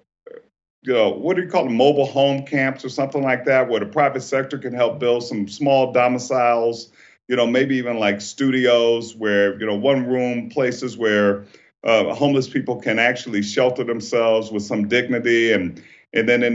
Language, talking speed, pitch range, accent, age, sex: English, 185 wpm, 110-130 Hz, American, 50-69, male